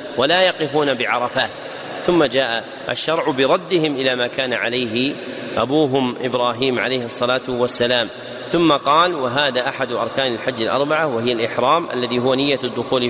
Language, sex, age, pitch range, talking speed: Arabic, male, 40-59, 125-140 Hz, 135 wpm